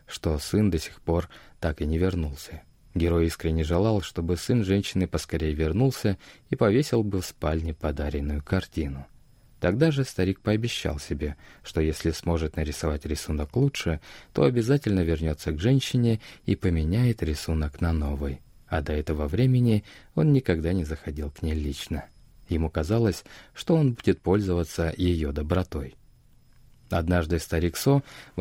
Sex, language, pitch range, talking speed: male, Russian, 80-110 Hz, 145 wpm